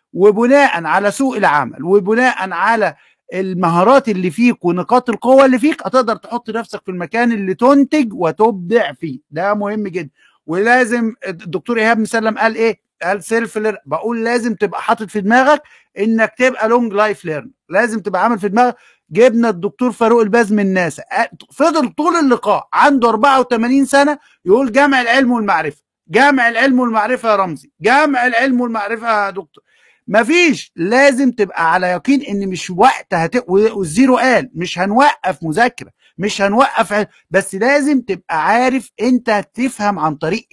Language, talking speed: Arabic, 145 wpm